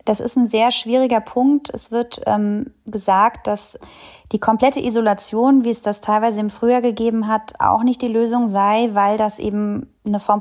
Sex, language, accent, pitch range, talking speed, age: female, German, German, 210-245 Hz, 185 wpm, 20-39